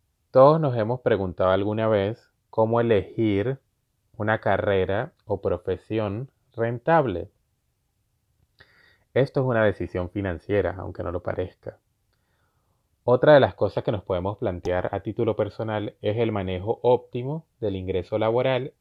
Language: Spanish